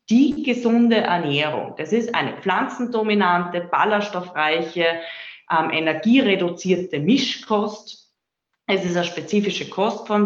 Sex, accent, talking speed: female, German, 95 wpm